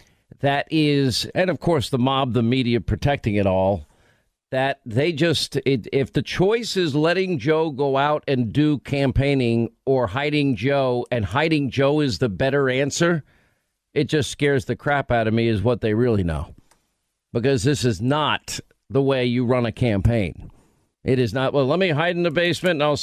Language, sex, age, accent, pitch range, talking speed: English, male, 50-69, American, 120-145 Hz, 190 wpm